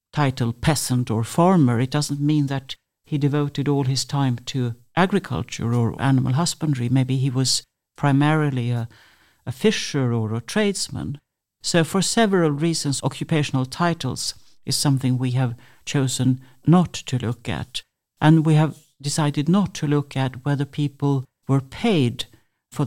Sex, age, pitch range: male, 60-79, 130-155 Hz